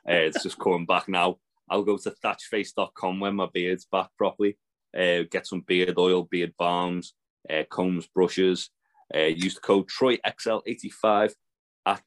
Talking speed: 155 wpm